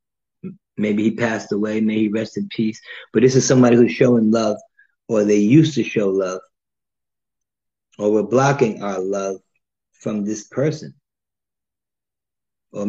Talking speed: 145 wpm